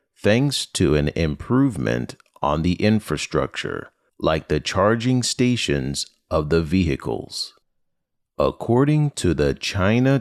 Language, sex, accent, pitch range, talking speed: English, male, American, 75-120 Hz, 105 wpm